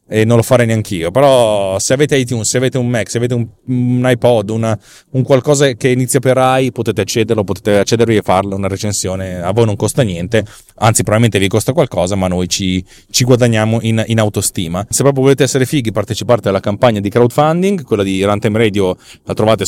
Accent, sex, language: native, male, Italian